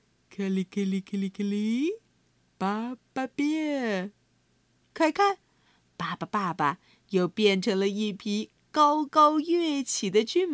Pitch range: 195-300 Hz